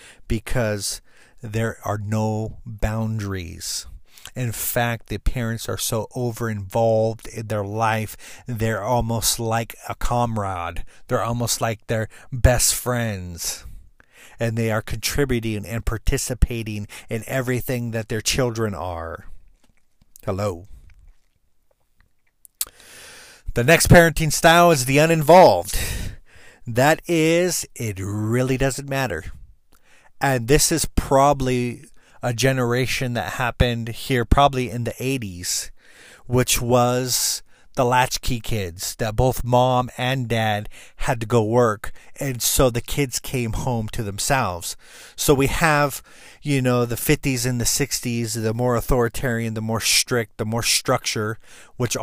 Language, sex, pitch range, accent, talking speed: English, male, 110-130 Hz, American, 125 wpm